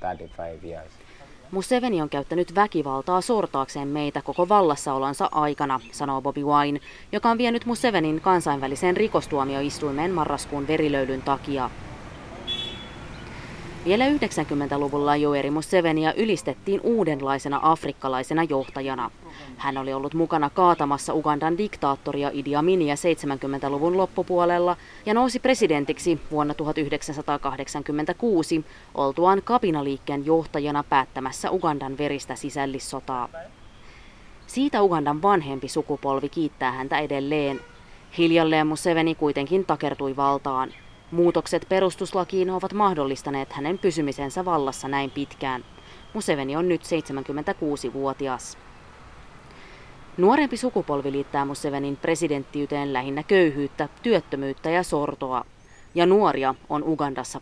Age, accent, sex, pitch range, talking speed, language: 20-39, native, female, 140-175 Hz, 95 wpm, Finnish